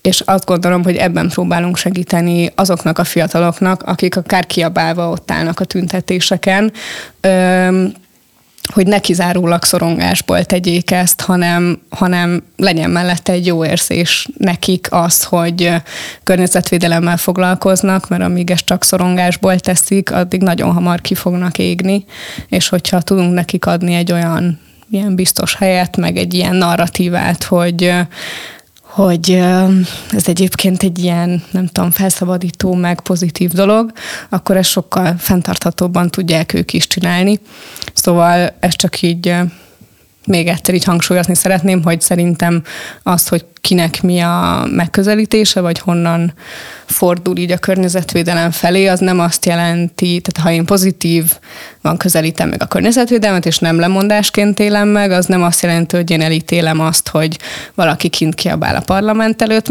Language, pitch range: Hungarian, 170-190 Hz